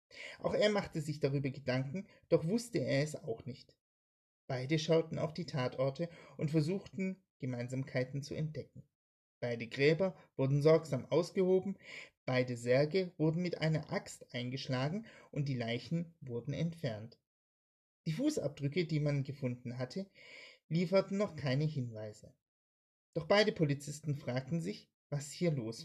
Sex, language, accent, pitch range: male, German, German, 125-175 Hz